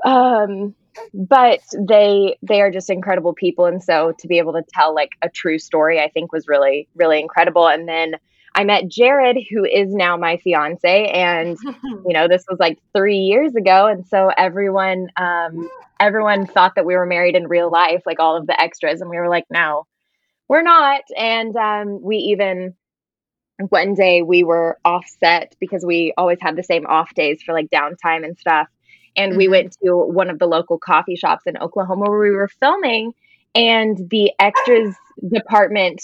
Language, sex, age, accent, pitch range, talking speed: English, female, 20-39, American, 175-210 Hz, 185 wpm